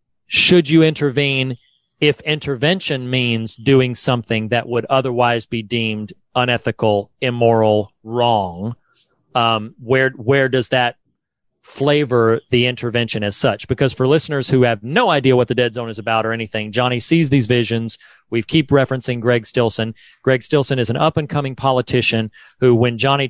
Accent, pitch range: American, 115-135 Hz